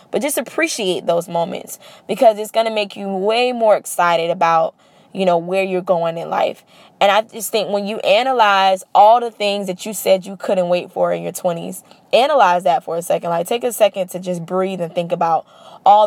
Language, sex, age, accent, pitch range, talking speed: English, female, 10-29, American, 190-255 Hz, 215 wpm